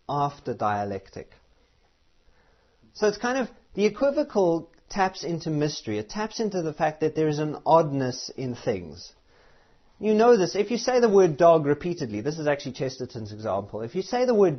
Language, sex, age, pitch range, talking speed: English, male, 30-49, 125-180 Hz, 175 wpm